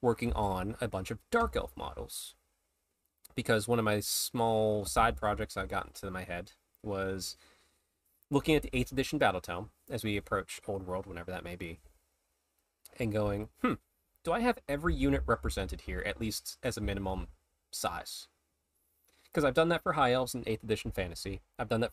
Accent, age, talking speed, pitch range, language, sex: American, 20-39, 180 wpm, 85-120 Hz, English, male